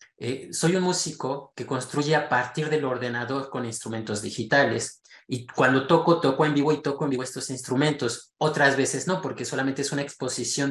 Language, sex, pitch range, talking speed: Spanish, male, 130-160 Hz, 185 wpm